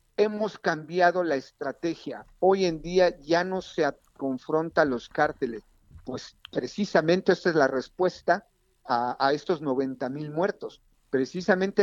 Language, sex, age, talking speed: Spanish, male, 50-69, 135 wpm